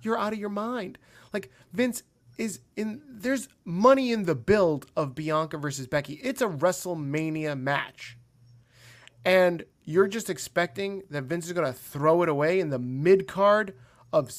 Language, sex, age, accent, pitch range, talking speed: English, male, 30-49, American, 130-195 Hz, 165 wpm